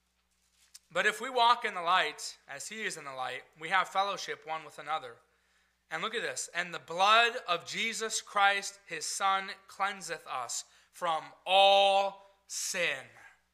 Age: 30-49